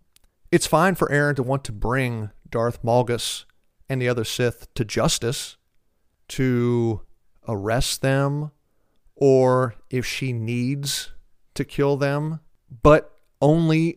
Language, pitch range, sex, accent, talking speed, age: English, 115-140 Hz, male, American, 120 wpm, 40-59